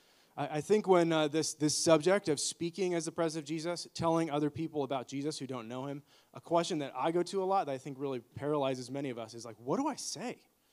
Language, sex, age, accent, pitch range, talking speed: English, male, 30-49, American, 130-165 Hz, 250 wpm